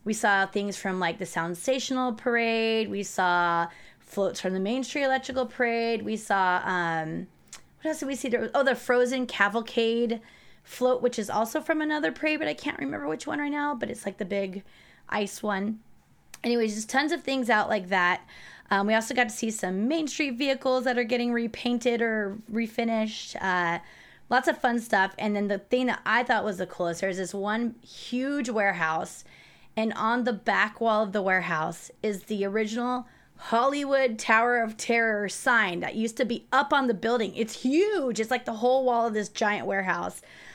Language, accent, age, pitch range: English, American, 20-39, 195-250 Hz